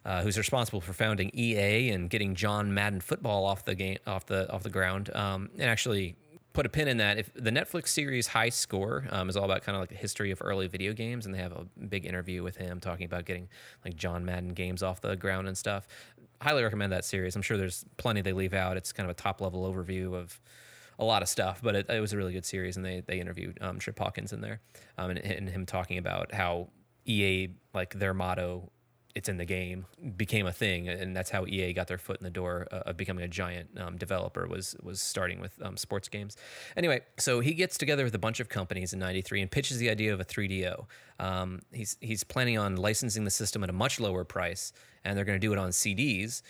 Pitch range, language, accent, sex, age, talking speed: 95-110 Hz, English, American, male, 20-39, 240 wpm